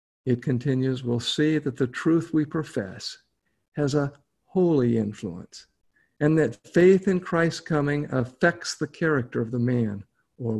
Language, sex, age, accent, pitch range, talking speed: English, male, 50-69, American, 125-160 Hz, 145 wpm